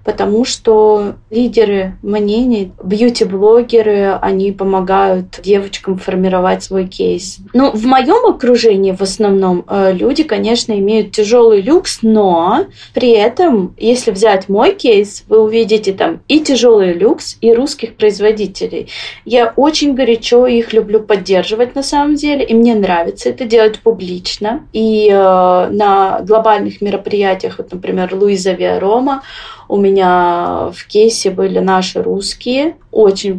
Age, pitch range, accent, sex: 20-39, 195-240 Hz, native, female